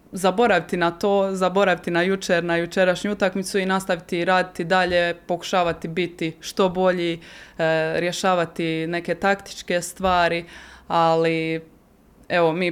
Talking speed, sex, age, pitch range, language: 120 wpm, female, 20-39, 165-185 Hz, Croatian